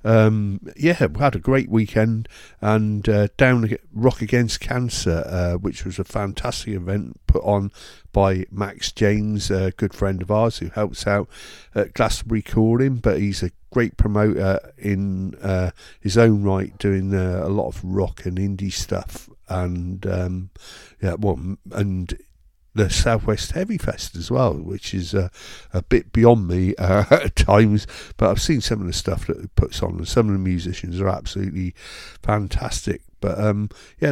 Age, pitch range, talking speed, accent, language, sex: 50-69, 95-110 Hz, 170 wpm, British, English, male